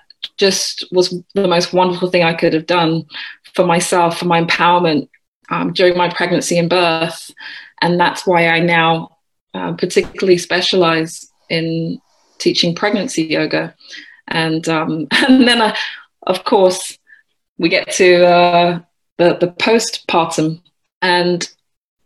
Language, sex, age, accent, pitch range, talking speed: English, female, 20-39, British, 165-195 Hz, 130 wpm